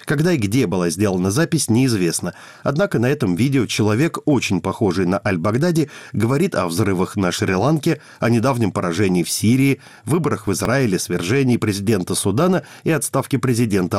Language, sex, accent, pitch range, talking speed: Russian, male, native, 105-140 Hz, 155 wpm